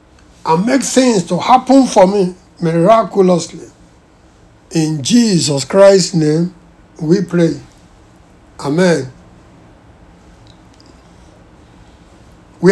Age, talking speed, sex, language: 60-79, 75 wpm, male, English